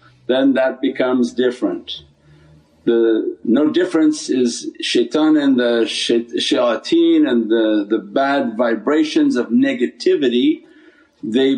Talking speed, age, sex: 105 wpm, 50-69, male